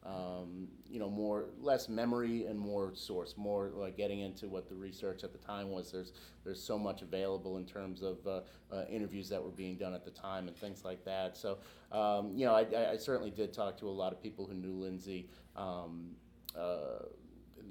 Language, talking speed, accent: English, 205 wpm, American